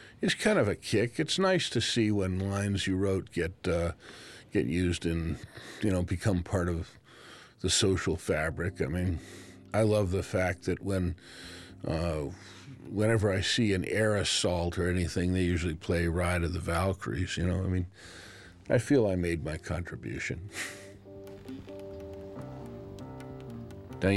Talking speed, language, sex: 150 wpm, English, male